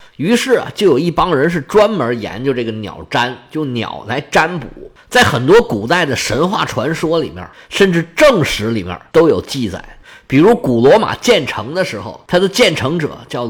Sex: male